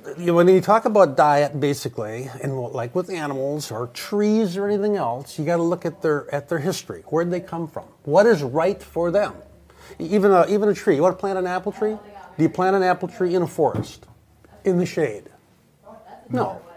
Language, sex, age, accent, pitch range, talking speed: English, male, 50-69, American, 145-185 Hz, 210 wpm